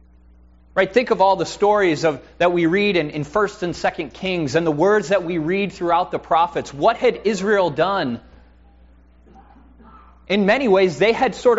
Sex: male